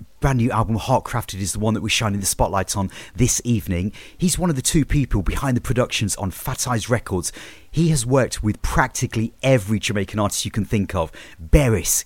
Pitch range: 105-130 Hz